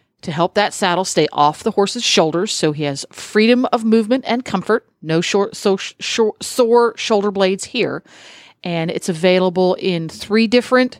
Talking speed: 160 wpm